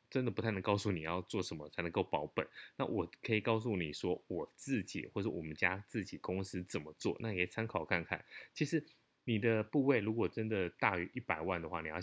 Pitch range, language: 90-115 Hz, Chinese